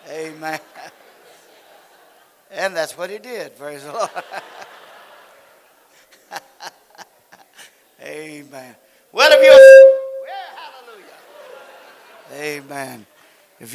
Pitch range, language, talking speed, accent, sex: 165-220 Hz, English, 80 wpm, American, male